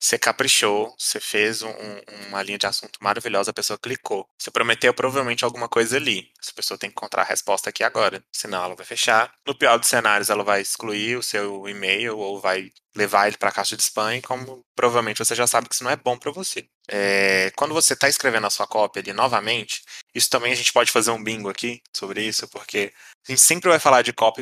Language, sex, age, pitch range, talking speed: Portuguese, male, 20-39, 105-120 Hz, 230 wpm